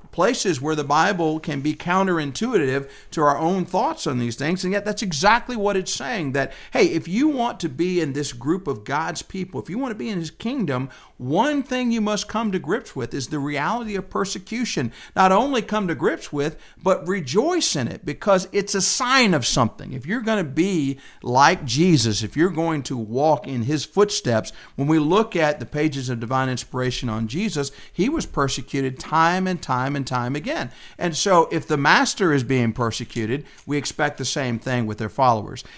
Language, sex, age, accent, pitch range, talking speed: English, male, 50-69, American, 140-205 Hz, 205 wpm